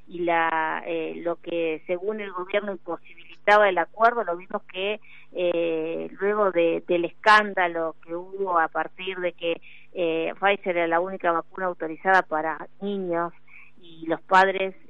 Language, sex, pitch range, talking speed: Spanish, female, 170-205 Hz, 150 wpm